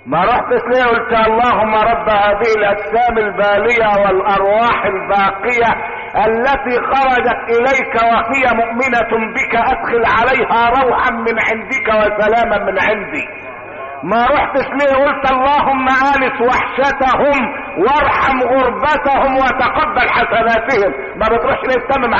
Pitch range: 235-335 Hz